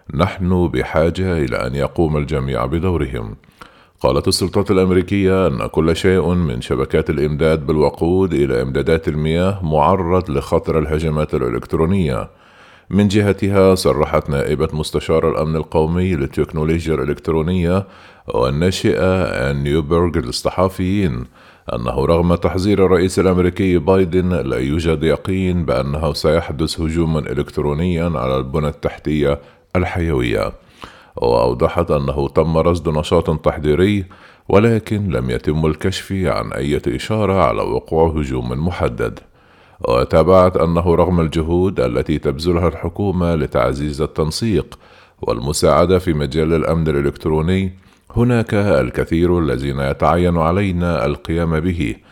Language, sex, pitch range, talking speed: Arabic, male, 75-95 Hz, 105 wpm